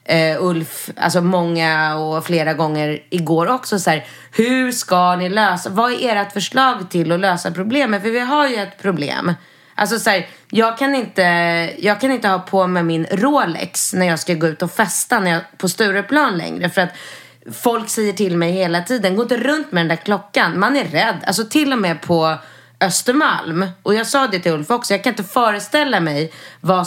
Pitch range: 160-210 Hz